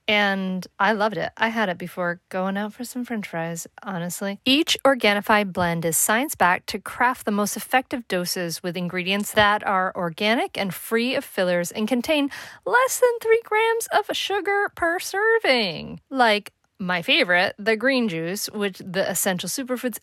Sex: female